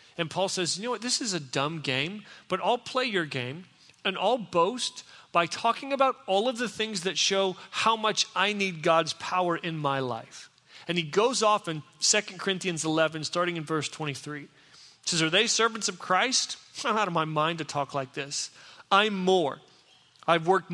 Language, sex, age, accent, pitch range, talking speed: English, male, 40-59, American, 160-210 Hz, 195 wpm